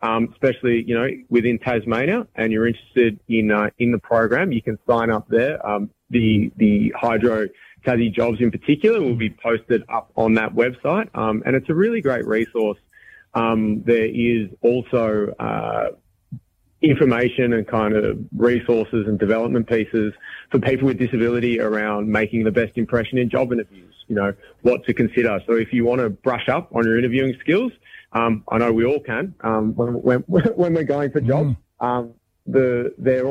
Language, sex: English, male